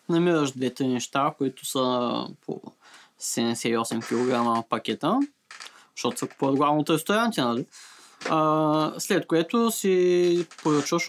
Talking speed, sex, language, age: 95 wpm, male, Bulgarian, 20-39